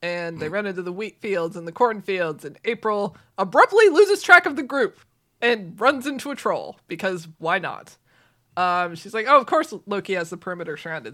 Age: 20-39